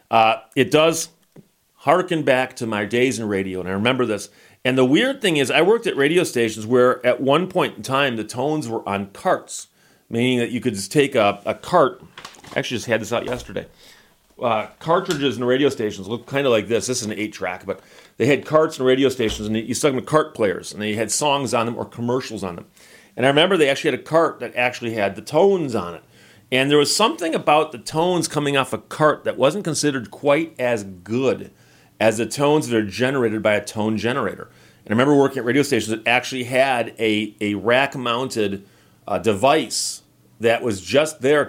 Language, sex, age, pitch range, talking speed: English, male, 40-59, 110-140 Hz, 220 wpm